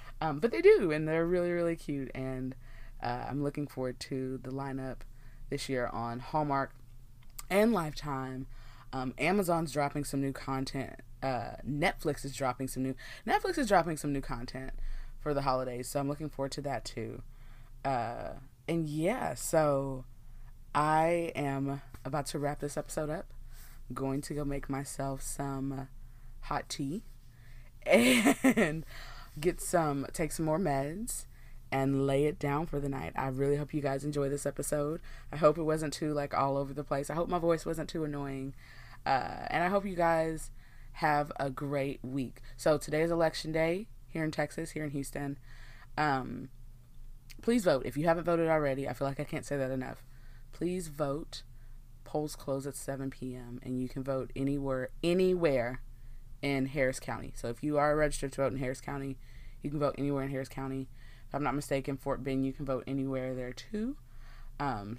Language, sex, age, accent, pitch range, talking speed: English, female, 20-39, American, 130-150 Hz, 180 wpm